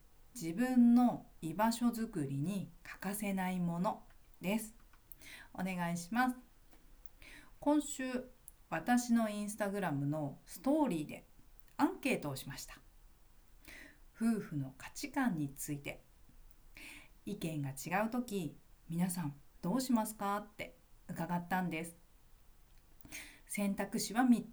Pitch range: 155-235 Hz